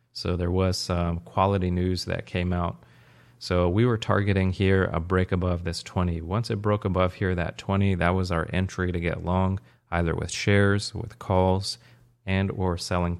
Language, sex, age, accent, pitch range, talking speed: English, male, 30-49, American, 90-105 Hz, 185 wpm